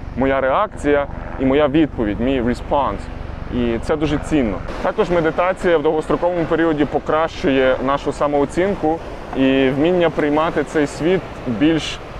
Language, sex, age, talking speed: Ukrainian, male, 20-39, 125 wpm